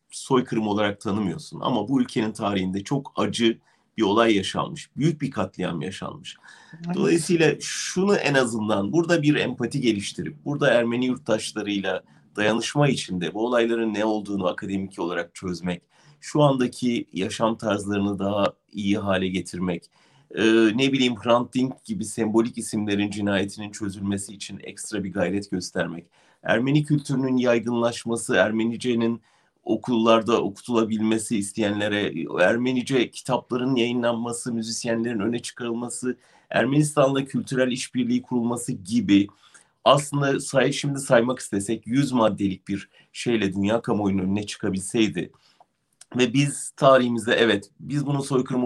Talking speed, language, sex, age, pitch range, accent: 120 wpm, German, male, 40-59, 105-130 Hz, Turkish